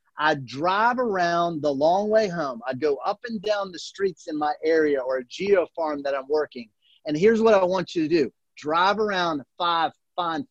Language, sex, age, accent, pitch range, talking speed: English, male, 30-49, American, 160-225 Hz, 205 wpm